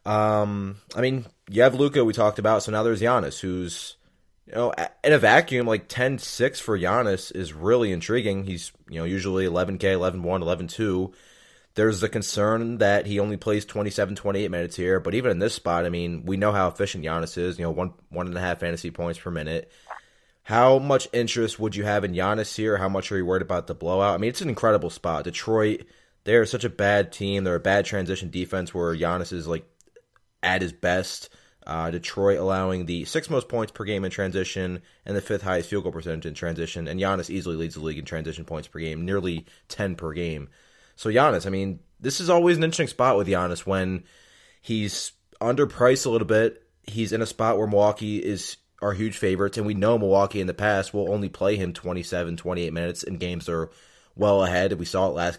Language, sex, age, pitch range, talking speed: English, male, 20-39, 85-105 Hz, 215 wpm